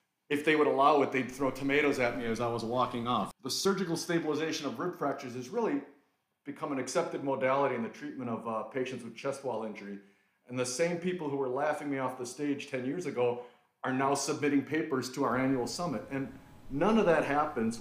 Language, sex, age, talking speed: English, male, 40-59, 215 wpm